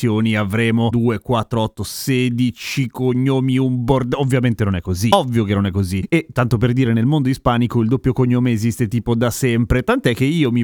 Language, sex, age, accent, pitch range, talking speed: Italian, male, 30-49, native, 115-155 Hz, 195 wpm